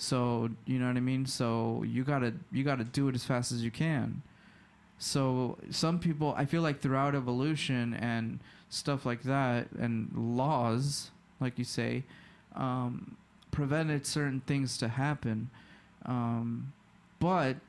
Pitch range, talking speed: 115-140 Hz, 150 wpm